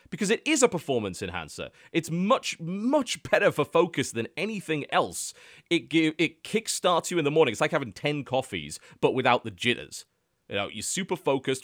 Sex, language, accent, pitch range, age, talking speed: male, English, British, 115-175 Hz, 30-49, 185 wpm